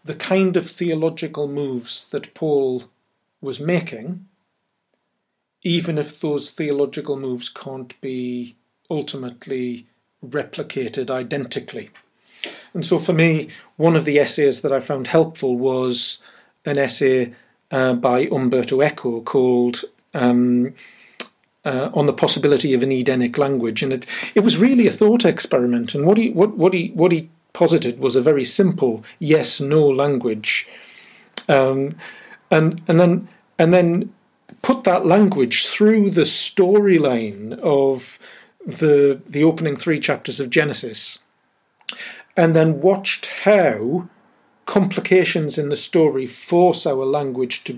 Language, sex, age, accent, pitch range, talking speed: English, male, 40-59, British, 130-180 Hz, 130 wpm